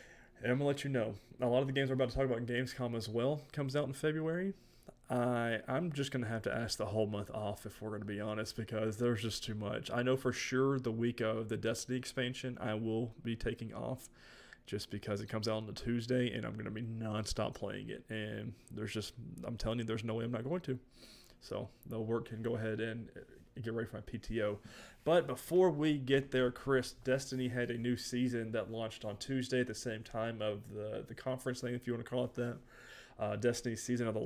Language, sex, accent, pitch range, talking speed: English, male, American, 110-125 Hz, 245 wpm